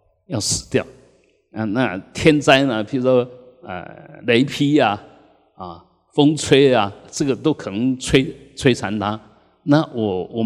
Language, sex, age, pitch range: Chinese, male, 50-69, 100-140 Hz